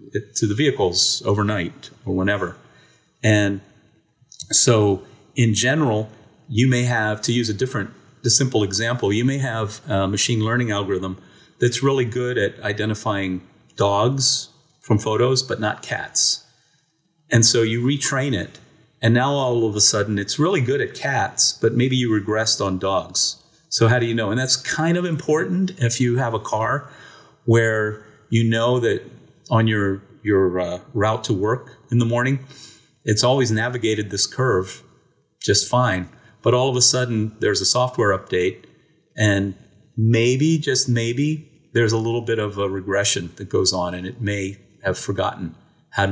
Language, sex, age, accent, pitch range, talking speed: English, male, 40-59, American, 100-125 Hz, 165 wpm